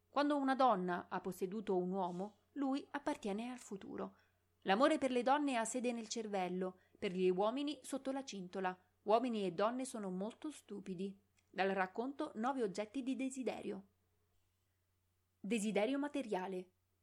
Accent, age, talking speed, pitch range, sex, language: native, 30-49, 135 wpm, 185-265 Hz, female, Italian